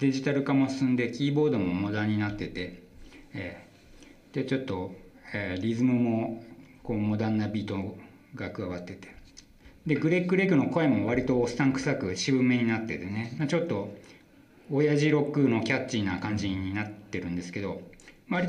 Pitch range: 95-130 Hz